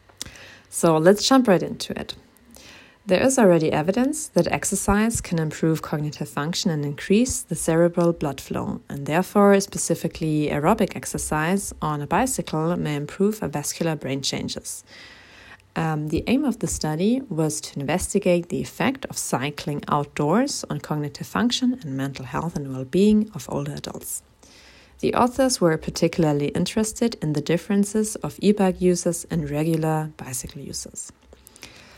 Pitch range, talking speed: 150-200 Hz, 145 wpm